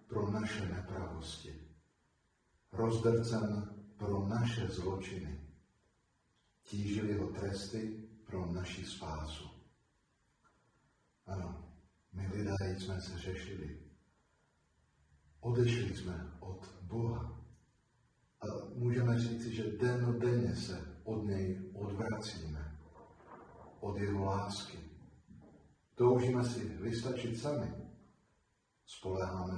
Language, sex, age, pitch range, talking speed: Slovak, male, 40-59, 95-115 Hz, 80 wpm